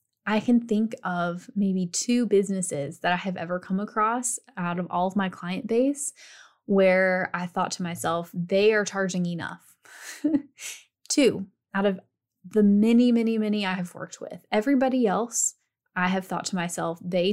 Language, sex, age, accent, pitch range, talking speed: English, female, 10-29, American, 180-220 Hz, 165 wpm